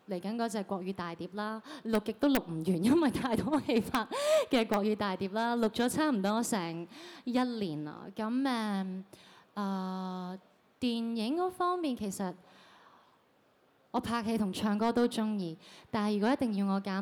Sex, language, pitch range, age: female, Chinese, 180-225 Hz, 20-39